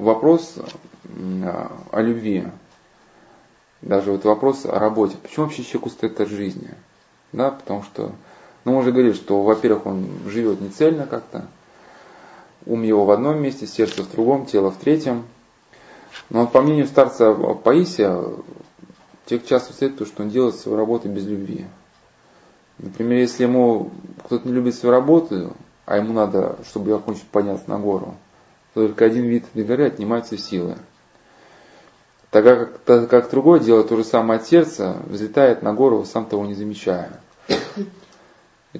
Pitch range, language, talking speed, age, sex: 100-125 Hz, Russian, 150 wpm, 20-39, male